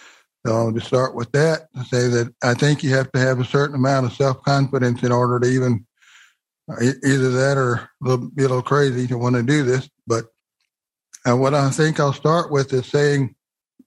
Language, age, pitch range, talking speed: English, 60-79, 125-145 Hz, 195 wpm